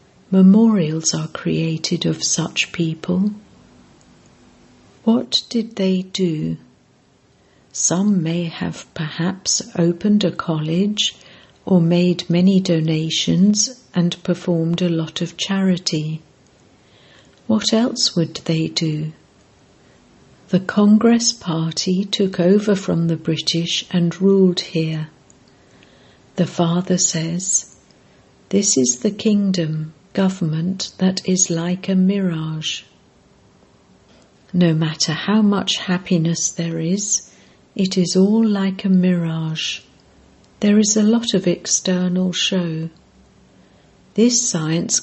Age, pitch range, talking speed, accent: 60-79, 160-195 Hz, 105 wpm, British